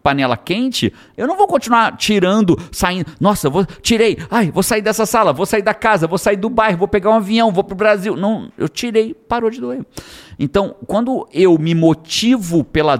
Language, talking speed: Portuguese, 200 wpm